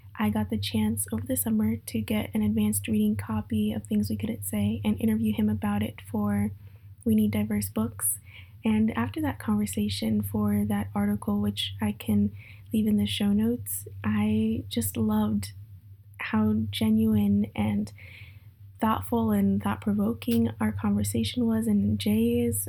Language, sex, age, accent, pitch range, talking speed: English, female, 10-29, American, 105-110 Hz, 150 wpm